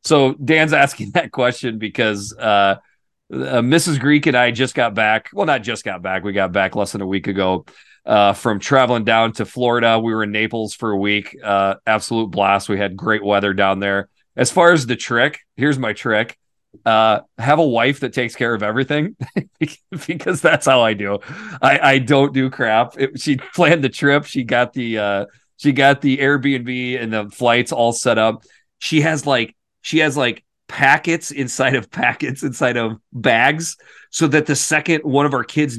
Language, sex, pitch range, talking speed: English, male, 110-150 Hz, 195 wpm